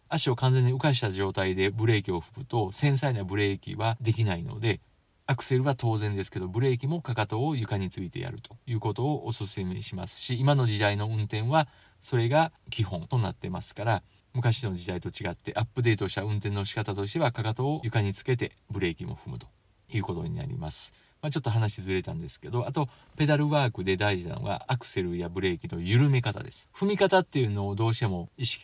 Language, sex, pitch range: Japanese, male, 100-130 Hz